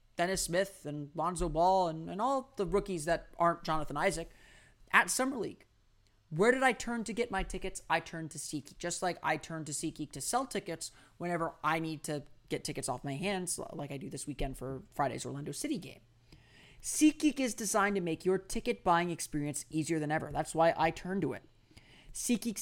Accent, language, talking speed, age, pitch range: American, English, 200 wpm, 30-49, 145-205 Hz